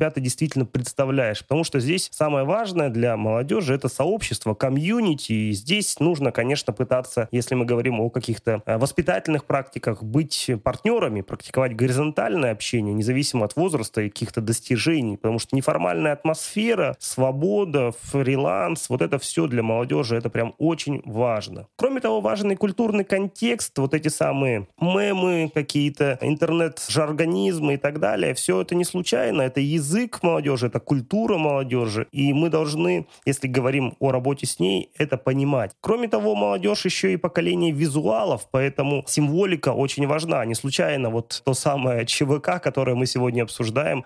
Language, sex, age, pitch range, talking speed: Russian, male, 20-39, 125-160 Hz, 145 wpm